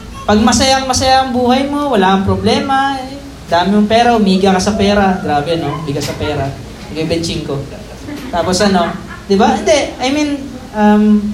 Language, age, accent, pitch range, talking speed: Filipino, 20-39, native, 200-250 Hz, 160 wpm